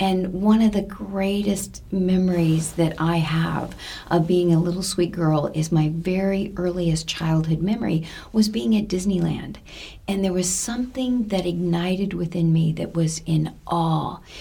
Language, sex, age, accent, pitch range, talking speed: English, female, 40-59, American, 165-195 Hz, 155 wpm